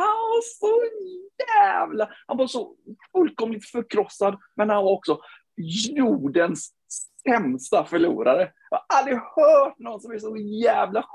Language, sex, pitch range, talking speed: Swedish, male, 210-335 Hz, 130 wpm